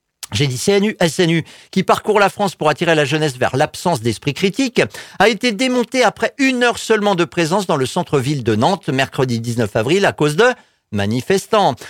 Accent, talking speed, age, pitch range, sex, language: French, 185 wpm, 50-69, 150-215 Hz, male, French